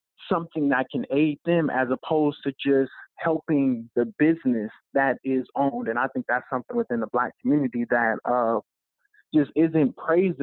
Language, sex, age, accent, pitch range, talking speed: English, male, 20-39, American, 130-170 Hz, 165 wpm